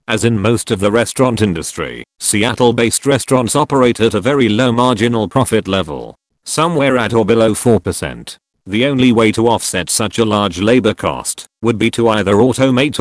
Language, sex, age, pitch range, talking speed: English, male, 40-59, 105-125 Hz, 170 wpm